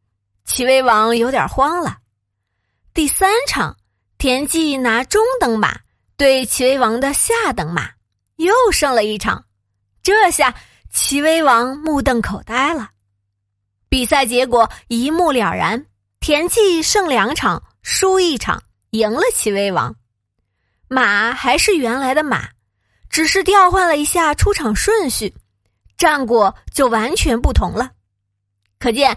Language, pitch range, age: Chinese, 195-315 Hz, 20-39